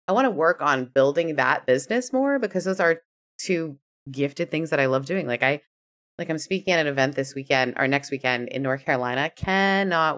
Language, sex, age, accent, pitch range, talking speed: English, female, 20-39, American, 130-180 Hz, 210 wpm